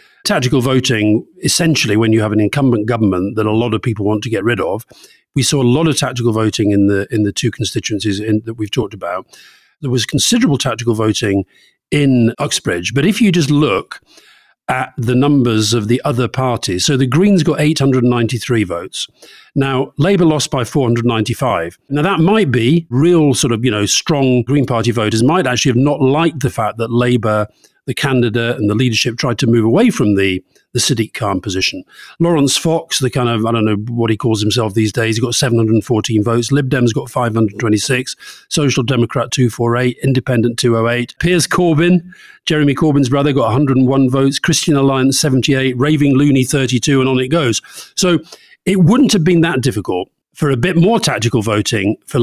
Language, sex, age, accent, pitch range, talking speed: English, male, 40-59, British, 115-145 Hz, 190 wpm